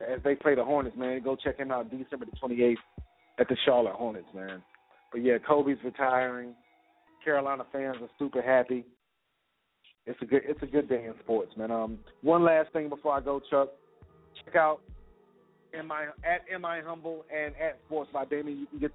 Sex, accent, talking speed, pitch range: male, American, 195 wpm, 120-150 Hz